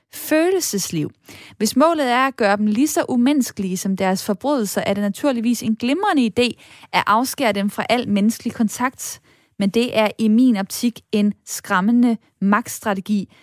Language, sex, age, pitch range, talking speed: Danish, female, 20-39, 195-245 Hz, 155 wpm